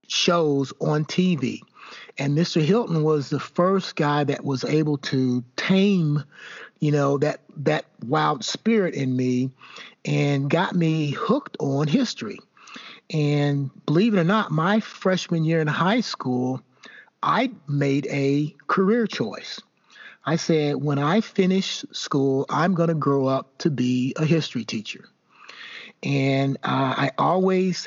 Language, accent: English, American